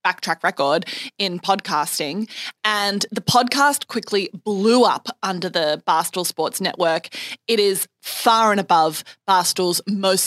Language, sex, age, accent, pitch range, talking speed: English, female, 20-39, Australian, 175-220 Hz, 130 wpm